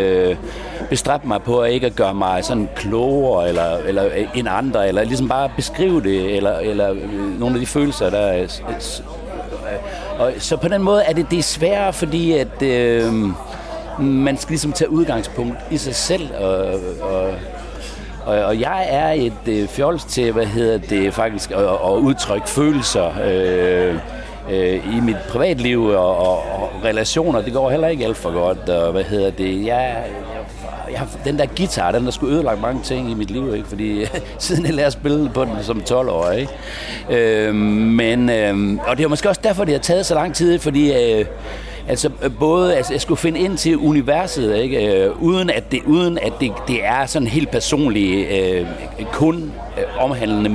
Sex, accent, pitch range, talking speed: male, native, 105-150 Hz, 175 wpm